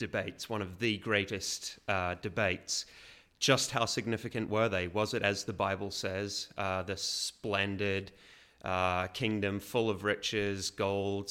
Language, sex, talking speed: English, male, 145 wpm